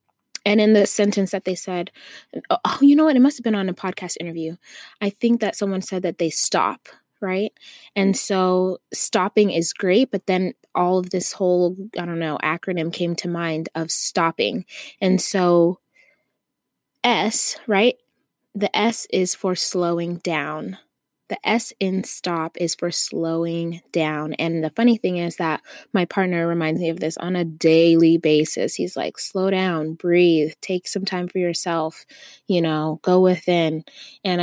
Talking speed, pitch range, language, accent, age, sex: 170 wpm, 165-200 Hz, English, American, 20-39, female